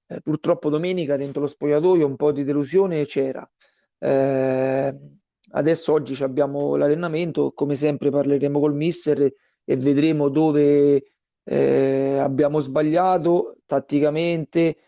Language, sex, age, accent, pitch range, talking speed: Italian, male, 30-49, native, 140-160 Hz, 105 wpm